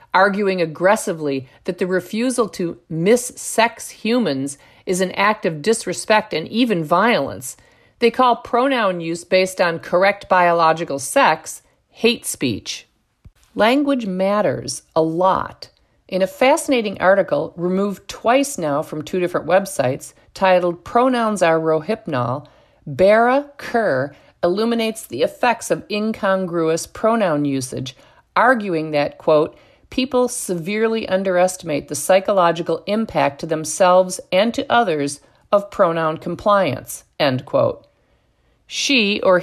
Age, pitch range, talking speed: 50-69, 165-220 Hz, 115 wpm